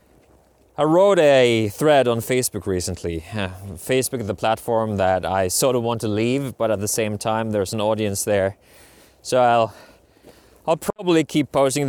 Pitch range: 105-125 Hz